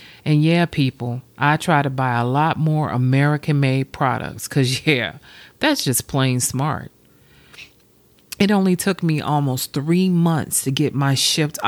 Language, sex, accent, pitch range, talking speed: English, female, American, 130-170 Hz, 150 wpm